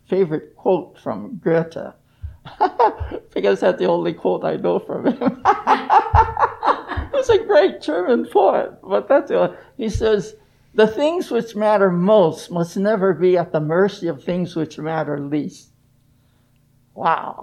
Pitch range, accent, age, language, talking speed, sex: 130-215 Hz, American, 60-79, English, 140 wpm, male